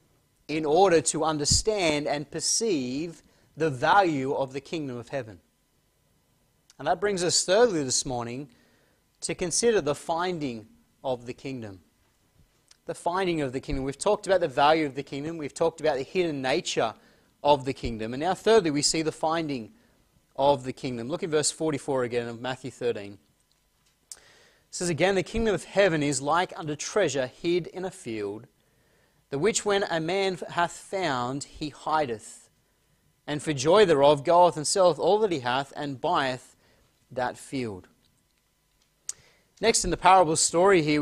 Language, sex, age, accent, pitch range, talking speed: English, male, 30-49, Australian, 135-175 Hz, 165 wpm